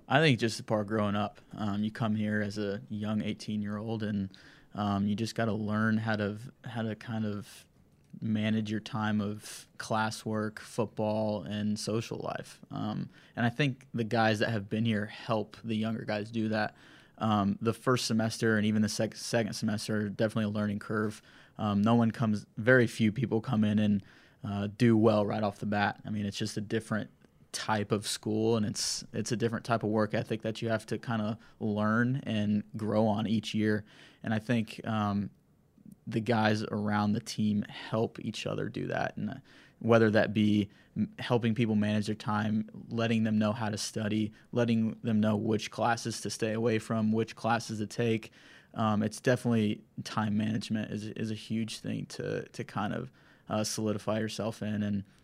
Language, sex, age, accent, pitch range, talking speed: English, male, 20-39, American, 105-115 Hz, 195 wpm